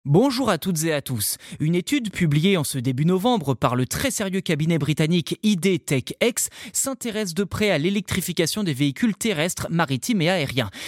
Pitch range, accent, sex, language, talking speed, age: 140-220 Hz, French, male, French, 180 wpm, 20-39